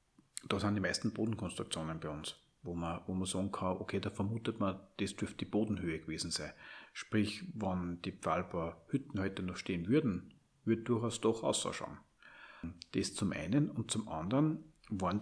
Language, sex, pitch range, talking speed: German, male, 95-115 Hz, 165 wpm